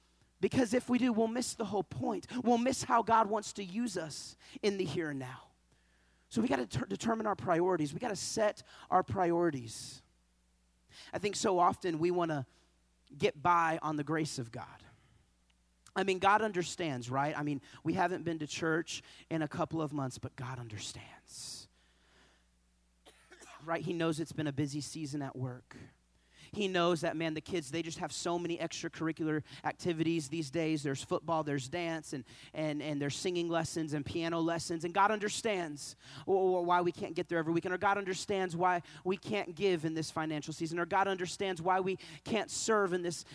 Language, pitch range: English, 145-195 Hz